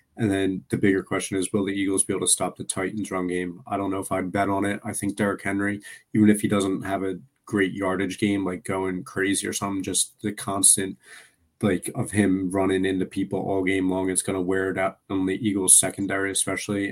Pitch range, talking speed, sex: 95-100 Hz, 235 wpm, male